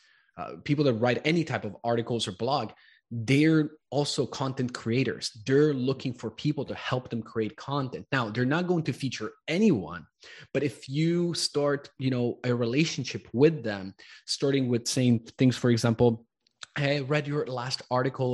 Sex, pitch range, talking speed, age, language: male, 115-145 Hz, 165 wpm, 20-39, English